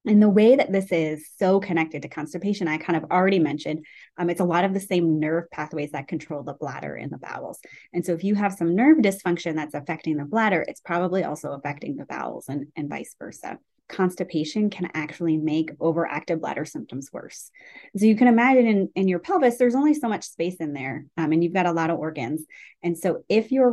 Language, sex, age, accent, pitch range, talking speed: English, female, 30-49, American, 155-195 Hz, 225 wpm